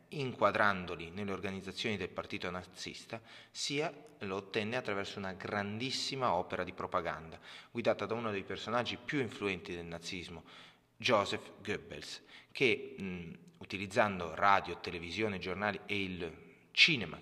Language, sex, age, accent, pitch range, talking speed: Italian, male, 30-49, native, 90-110 Hz, 120 wpm